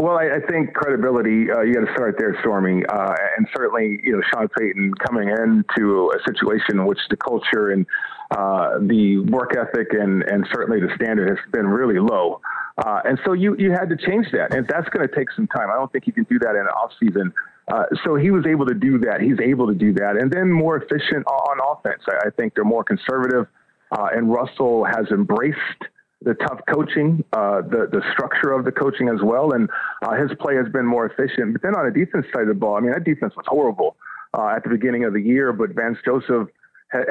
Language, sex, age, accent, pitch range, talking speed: English, male, 40-59, American, 110-160 Hz, 235 wpm